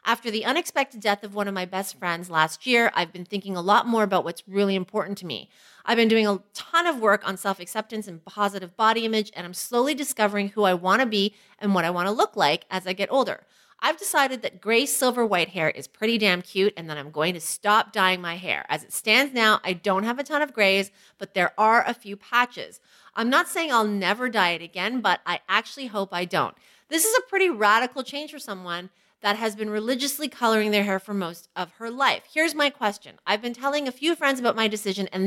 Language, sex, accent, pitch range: English, female, American, 190-245 Hz